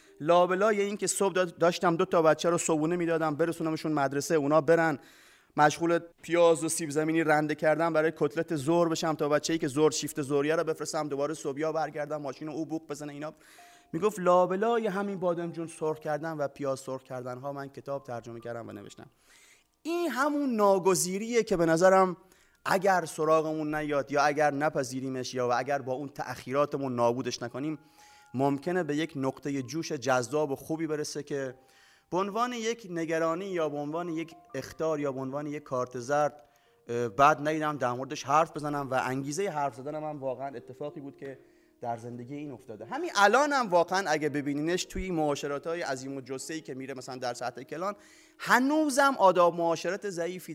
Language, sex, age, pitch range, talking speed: Persian, male, 30-49, 140-170 Hz, 170 wpm